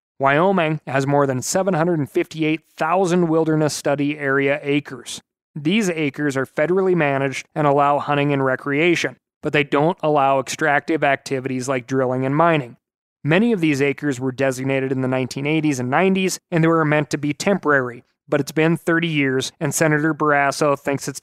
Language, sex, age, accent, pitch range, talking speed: English, male, 30-49, American, 140-160 Hz, 160 wpm